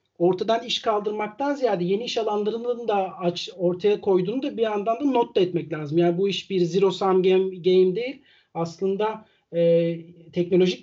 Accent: native